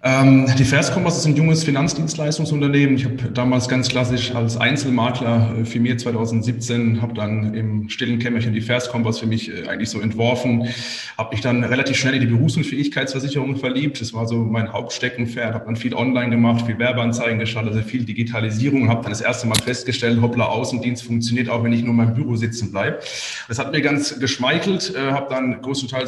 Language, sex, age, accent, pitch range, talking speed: German, male, 30-49, German, 115-130 Hz, 180 wpm